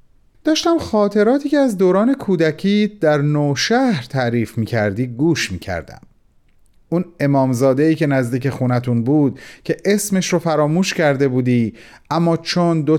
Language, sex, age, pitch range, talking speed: Persian, male, 40-59, 140-180 Hz, 130 wpm